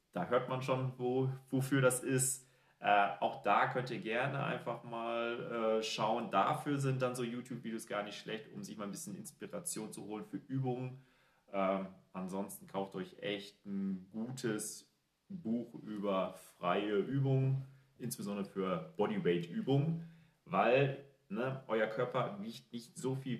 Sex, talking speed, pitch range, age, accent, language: male, 145 wpm, 105-145 Hz, 30-49, German, German